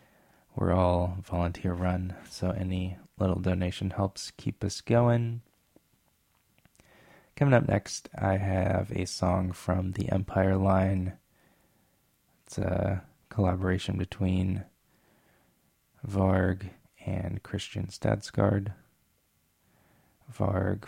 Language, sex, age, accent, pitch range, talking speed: English, male, 20-39, American, 90-105 Hz, 90 wpm